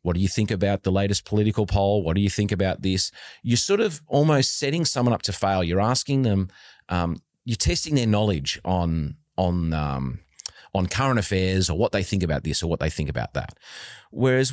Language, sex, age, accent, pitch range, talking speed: English, male, 30-49, Australian, 85-120 Hz, 210 wpm